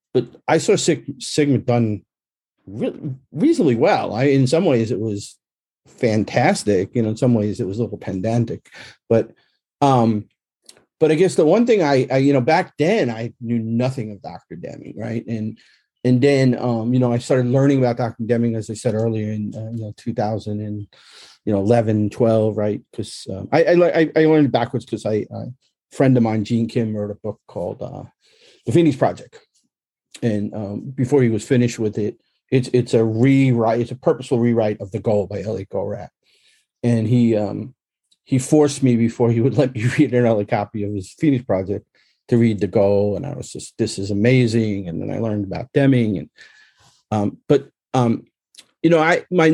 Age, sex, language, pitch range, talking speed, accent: 40-59, male, English, 105-130 Hz, 195 wpm, American